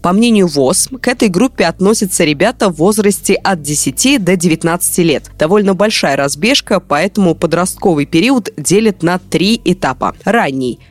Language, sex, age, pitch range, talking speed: Russian, female, 20-39, 155-210 Hz, 145 wpm